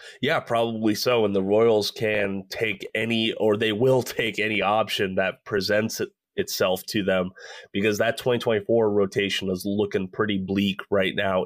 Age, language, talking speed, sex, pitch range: 20-39, English, 160 wpm, male, 100-115 Hz